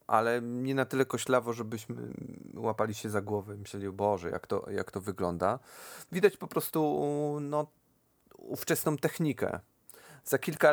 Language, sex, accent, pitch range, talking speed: English, male, Polish, 110-135 Hz, 130 wpm